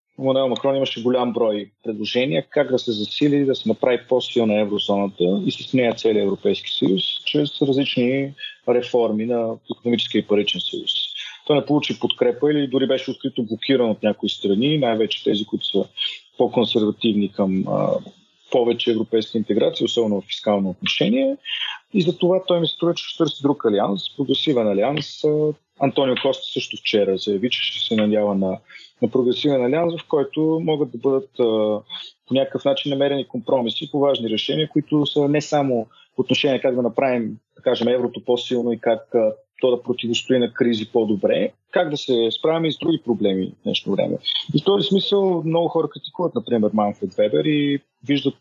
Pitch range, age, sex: 115-150 Hz, 40-59, male